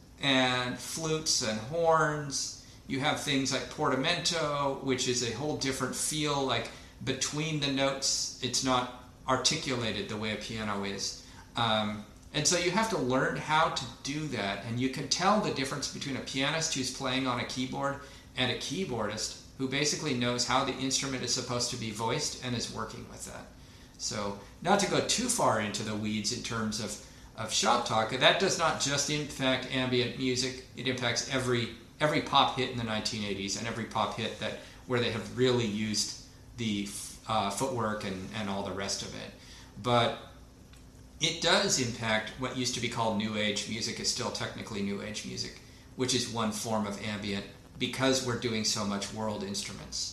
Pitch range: 110-135 Hz